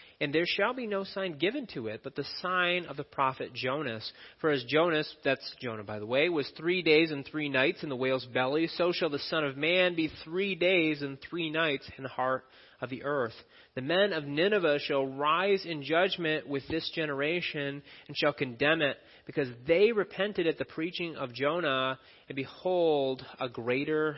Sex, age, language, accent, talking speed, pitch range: male, 30-49, English, American, 195 wpm, 130-170 Hz